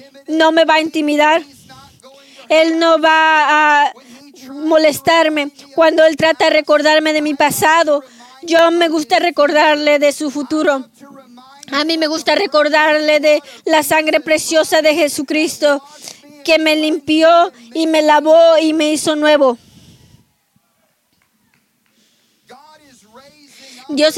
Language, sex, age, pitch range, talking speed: Spanish, female, 20-39, 280-315 Hz, 115 wpm